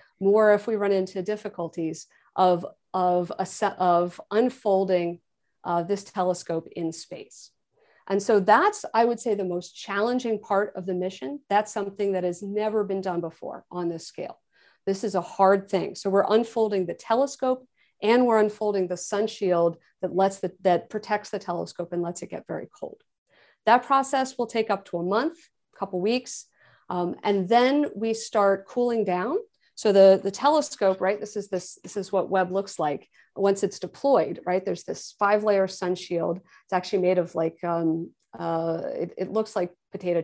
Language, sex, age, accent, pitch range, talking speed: English, female, 50-69, American, 180-220 Hz, 175 wpm